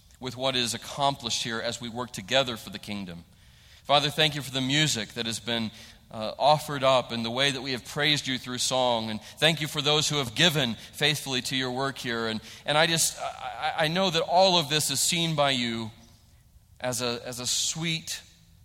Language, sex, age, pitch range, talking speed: English, male, 40-59, 115-160 Hz, 215 wpm